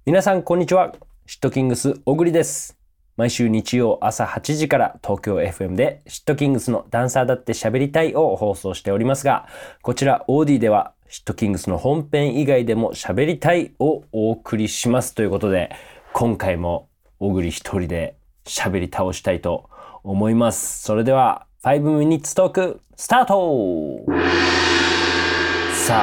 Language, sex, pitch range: Japanese, male, 90-135 Hz